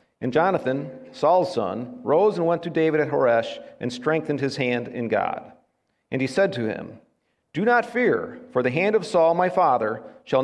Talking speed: 190 wpm